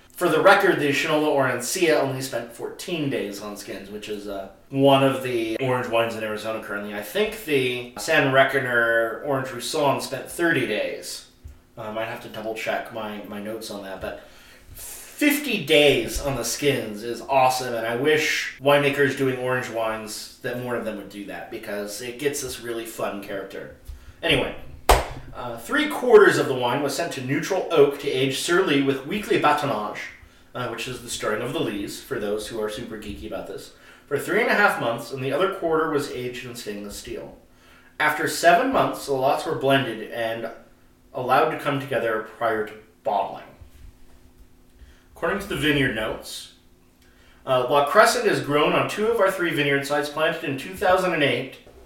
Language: English